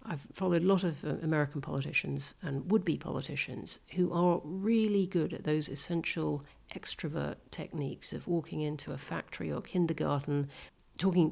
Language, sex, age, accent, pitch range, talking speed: English, female, 50-69, British, 145-175 Hz, 150 wpm